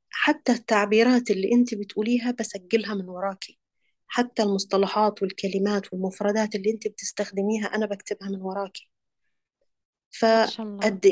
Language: Arabic